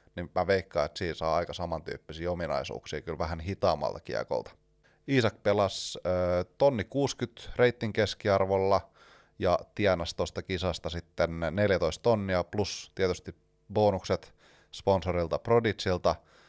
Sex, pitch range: male, 90-115 Hz